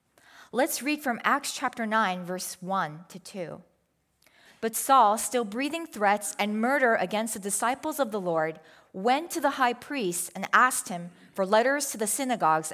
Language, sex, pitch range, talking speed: English, female, 200-265 Hz, 170 wpm